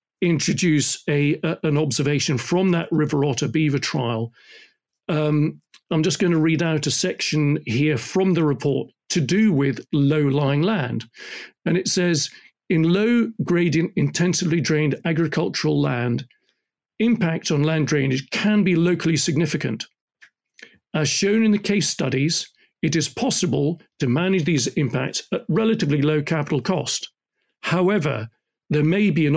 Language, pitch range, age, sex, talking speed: English, 150-185 Hz, 40-59, male, 145 wpm